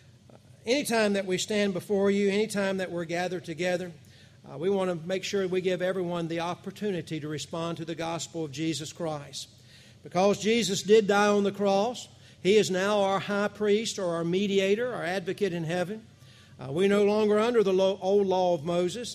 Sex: male